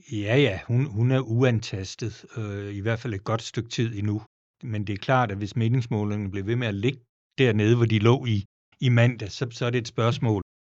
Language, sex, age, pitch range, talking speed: Danish, male, 60-79, 105-120 Hz, 225 wpm